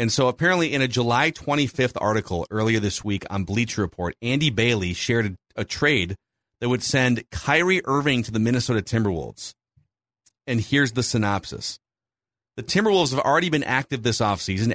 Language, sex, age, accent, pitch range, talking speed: English, male, 40-59, American, 100-135 Hz, 165 wpm